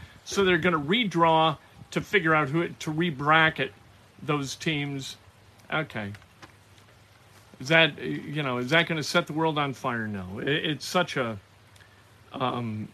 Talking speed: 155 wpm